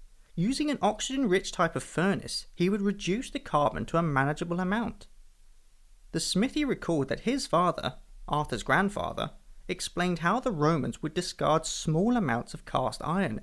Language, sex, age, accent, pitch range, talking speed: English, male, 30-49, British, 140-200 Hz, 150 wpm